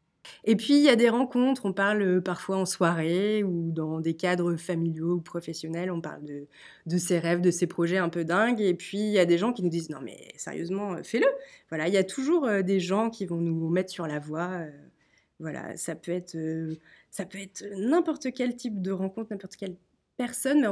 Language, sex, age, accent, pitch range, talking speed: French, female, 20-39, French, 170-230 Hz, 215 wpm